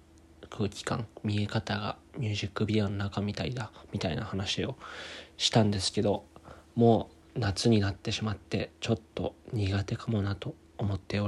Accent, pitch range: native, 85-110 Hz